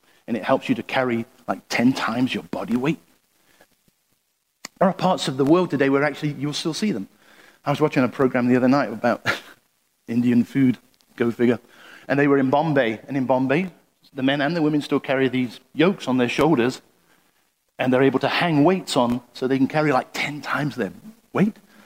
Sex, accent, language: male, British, English